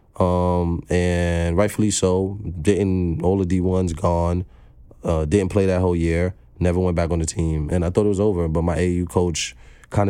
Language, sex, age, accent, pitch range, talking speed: English, male, 20-39, American, 85-95 Hz, 195 wpm